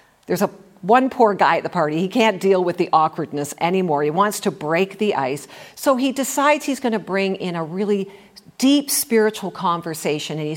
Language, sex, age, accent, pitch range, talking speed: English, female, 50-69, American, 170-235 Hz, 205 wpm